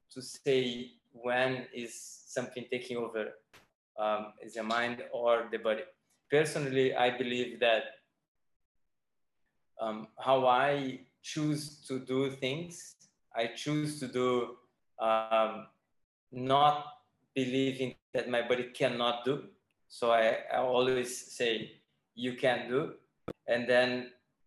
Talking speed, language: 115 wpm, English